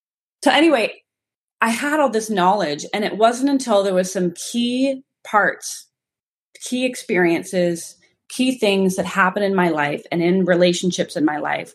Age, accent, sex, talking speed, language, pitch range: 30-49, American, female, 160 wpm, English, 170-200 Hz